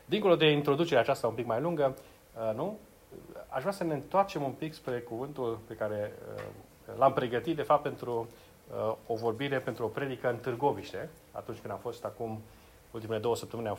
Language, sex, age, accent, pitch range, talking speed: Romanian, male, 30-49, native, 115-150 Hz, 180 wpm